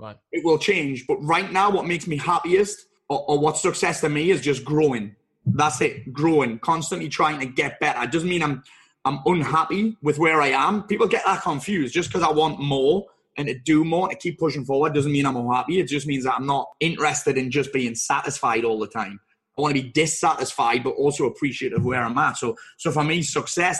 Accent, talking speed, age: British, 225 wpm, 20-39